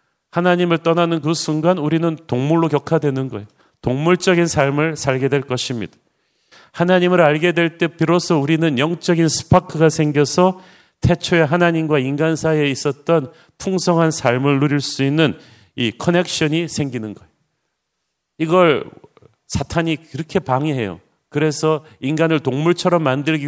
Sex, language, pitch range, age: male, Korean, 130-165 Hz, 40-59